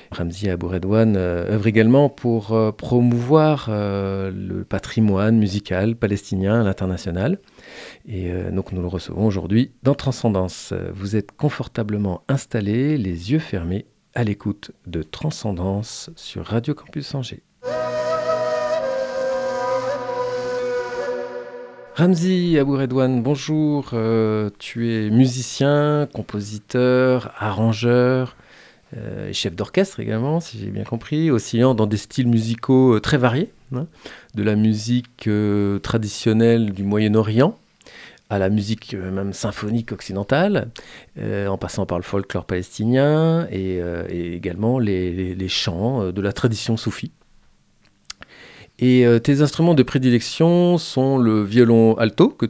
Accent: French